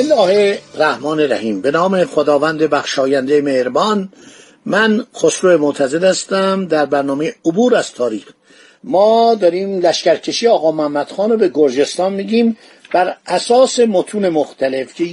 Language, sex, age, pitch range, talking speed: Persian, male, 50-69, 160-220 Hz, 125 wpm